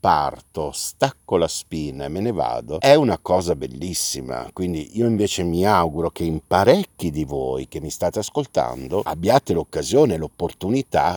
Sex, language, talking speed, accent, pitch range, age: male, Italian, 155 wpm, native, 85-125 Hz, 50-69